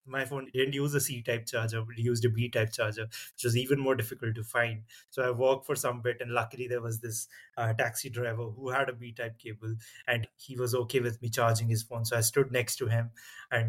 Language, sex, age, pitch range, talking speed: English, male, 20-39, 115-130 Hz, 240 wpm